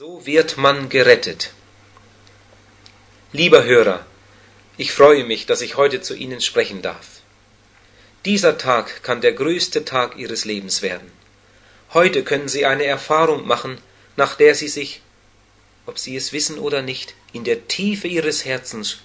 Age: 40-59